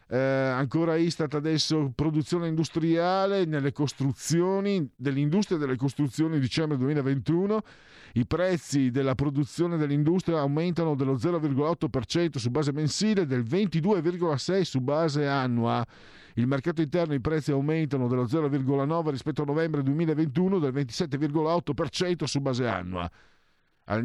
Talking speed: 115 wpm